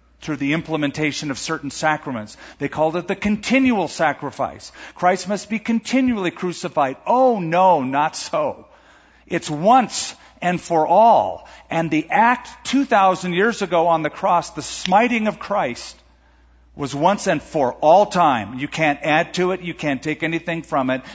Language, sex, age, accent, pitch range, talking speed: English, male, 50-69, American, 120-180 Hz, 160 wpm